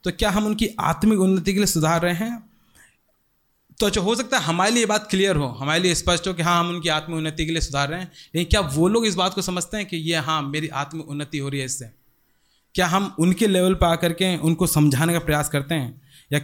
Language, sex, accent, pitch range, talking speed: Hindi, male, native, 140-180 Hz, 255 wpm